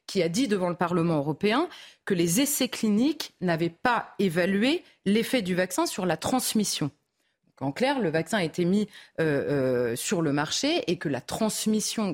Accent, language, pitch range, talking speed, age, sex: French, French, 175-230 Hz, 185 wpm, 30-49, female